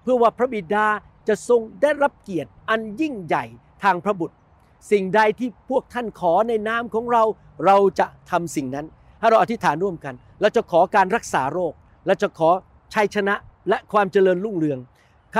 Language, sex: Thai, male